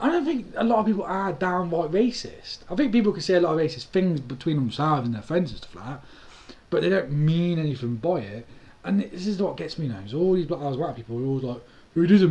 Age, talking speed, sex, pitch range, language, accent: 30-49, 265 wpm, male, 130-190 Hz, English, British